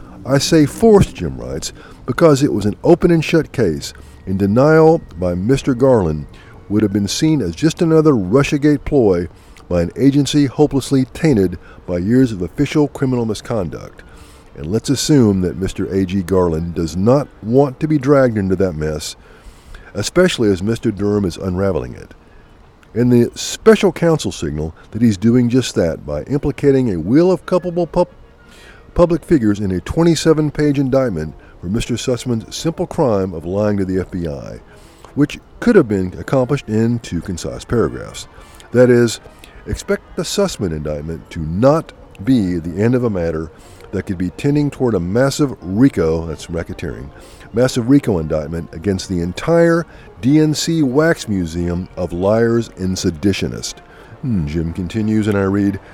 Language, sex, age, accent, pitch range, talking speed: English, male, 50-69, American, 90-145 Hz, 155 wpm